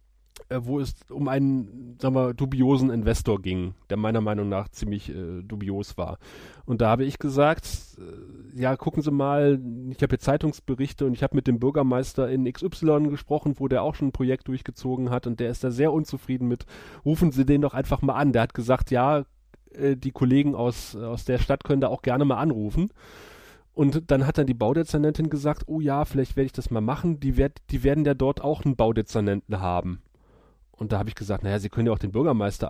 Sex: male